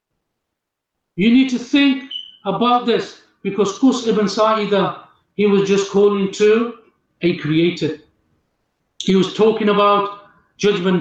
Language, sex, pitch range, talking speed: English, male, 200-260 Hz, 120 wpm